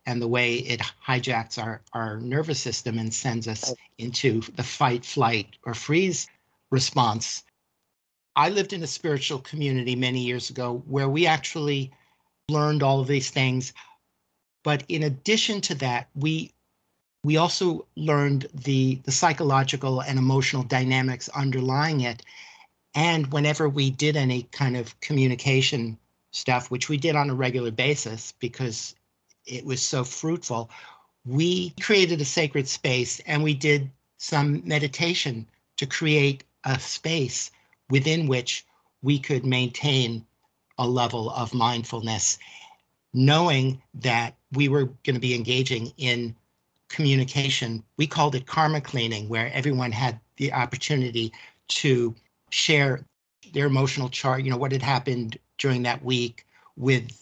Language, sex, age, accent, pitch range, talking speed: English, male, 50-69, American, 120-145 Hz, 135 wpm